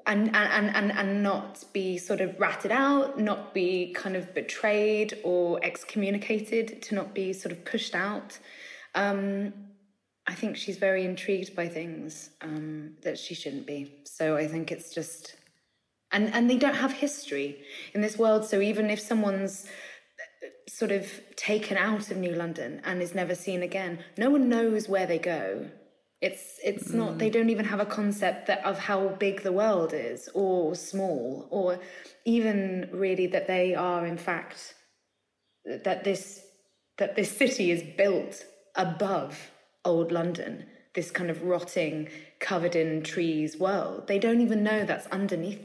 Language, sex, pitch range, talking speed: English, female, 175-210 Hz, 160 wpm